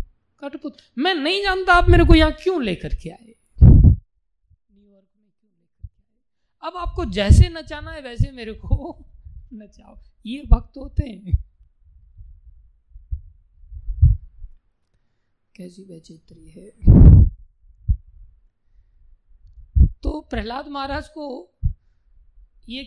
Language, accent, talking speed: Hindi, native, 100 wpm